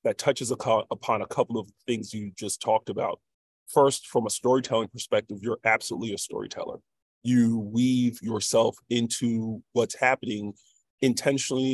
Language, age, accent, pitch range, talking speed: English, 30-49, American, 110-130 Hz, 140 wpm